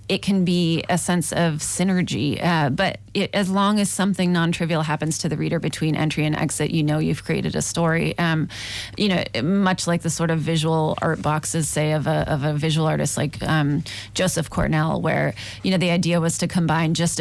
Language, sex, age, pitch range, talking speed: Italian, female, 20-39, 155-180 Hz, 210 wpm